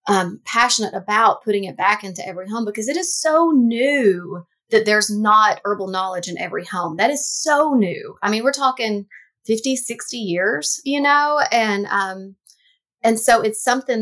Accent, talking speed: American, 175 wpm